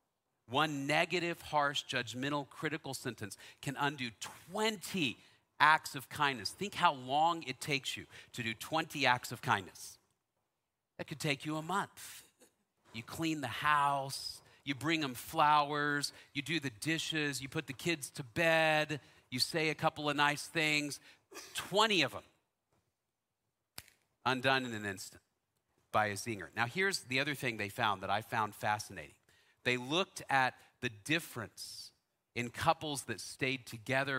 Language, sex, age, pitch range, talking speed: English, male, 40-59, 115-150 Hz, 150 wpm